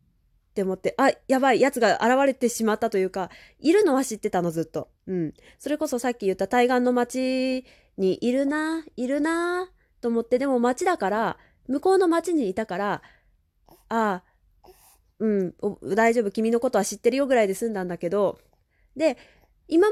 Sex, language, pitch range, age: female, Japanese, 200-295 Hz, 20-39